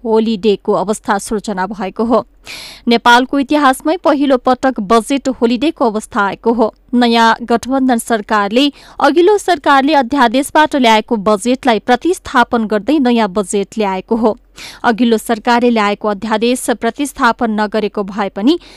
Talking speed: 145 wpm